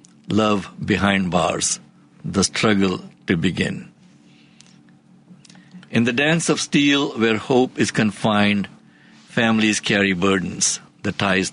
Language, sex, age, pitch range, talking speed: English, male, 60-79, 100-135 Hz, 110 wpm